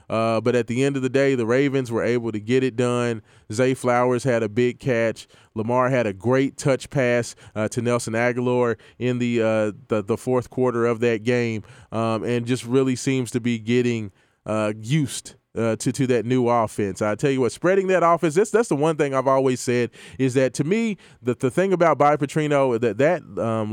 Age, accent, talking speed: 20-39, American, 215 wpm